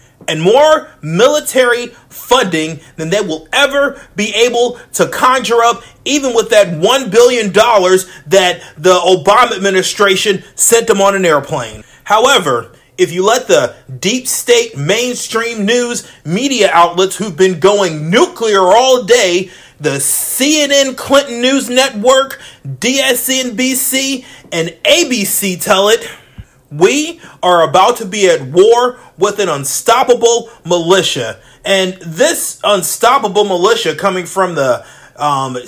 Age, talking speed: 30-49, 125 wpm